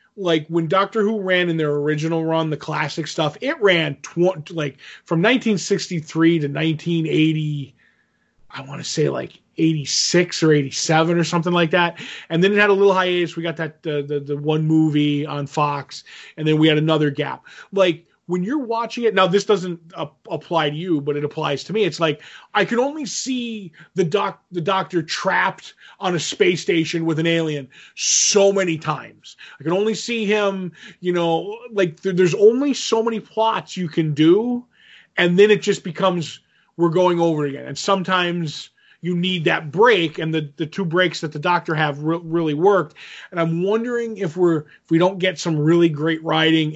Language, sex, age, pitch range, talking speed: English, male, 20-39, 155-190 Hz, 185 wpm